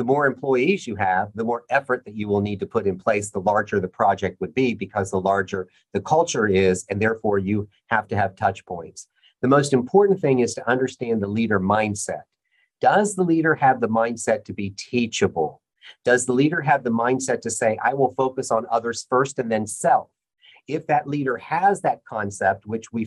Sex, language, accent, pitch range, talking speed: male, English, American, 105-140 Hz, 210 wpm